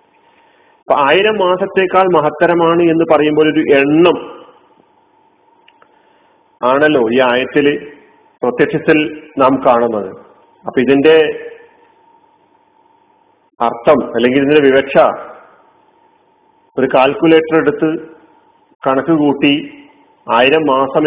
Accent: native